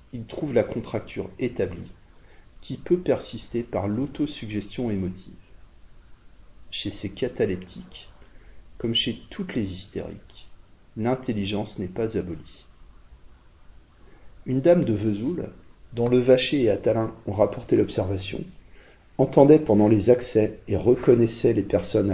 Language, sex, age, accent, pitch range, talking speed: French, male, 40-59, French, 90-120 Hz, 115 wpm